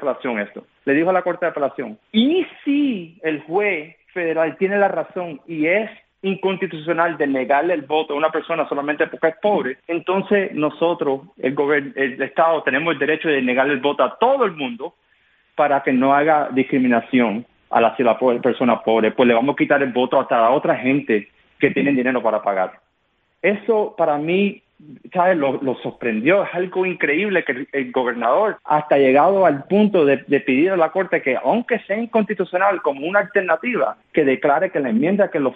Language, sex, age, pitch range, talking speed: Spanish, male, 40-59, 135-180 Hz, 190 wpm